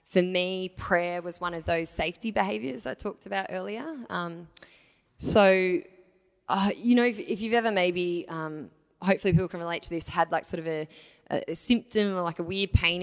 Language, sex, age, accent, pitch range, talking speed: English, female, 10-29, Australian, 165-195 Hz, 200 wpm